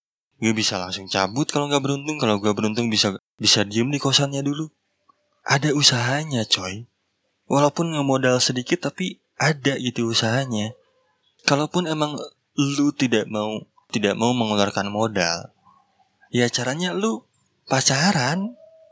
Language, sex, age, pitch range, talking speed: Indonesian, male, 20-39, 115-155 Hz, 125 wpm